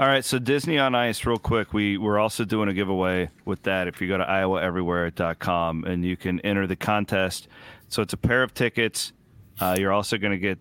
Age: 30-49